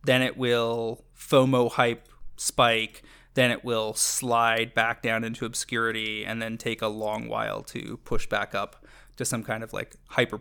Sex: male